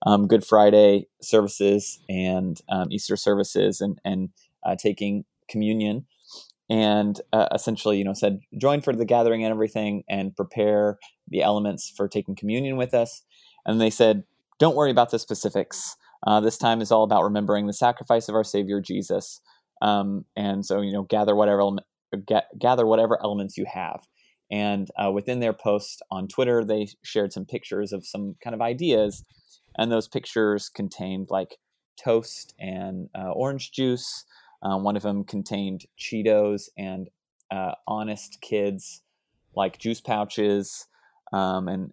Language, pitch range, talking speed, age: English, 100-115 Hz, 155 wpm, 20-39